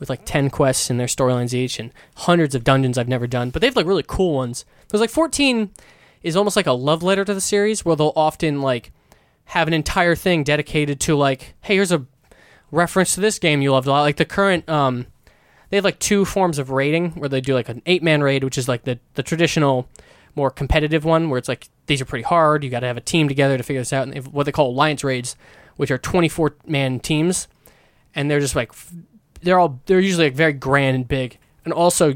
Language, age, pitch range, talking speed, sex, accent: English, 20-39, 130-165 Hz, 240 wpm, male, American